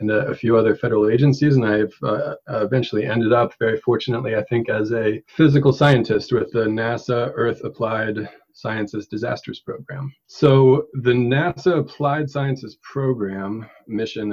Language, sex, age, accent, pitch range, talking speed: English, male, 40-59, American, 105-125 Hz, 150 wpm